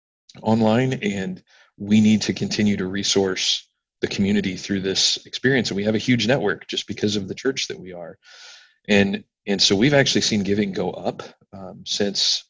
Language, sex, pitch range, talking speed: English, male, 95-105 Hz, 180 wpm